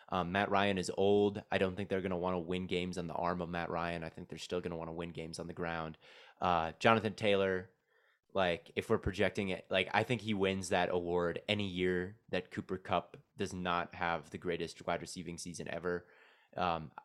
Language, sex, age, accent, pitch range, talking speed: English, male, 20-39, American, 85-95 Hz, 225 wpm